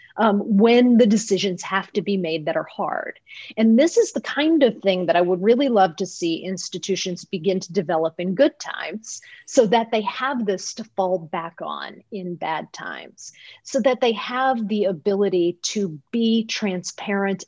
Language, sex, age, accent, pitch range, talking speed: English, female, 40-59, American, 175-215 Hz, 180 wpm